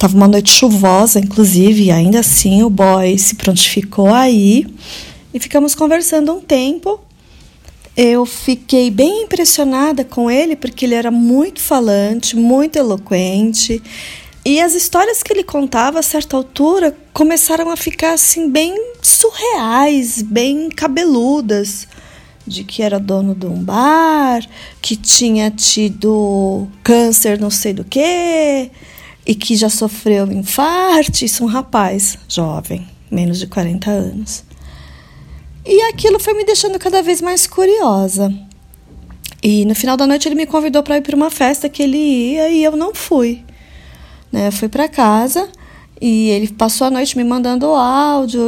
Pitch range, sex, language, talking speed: 215-310 Hz, female, Portuguese, 150 wpm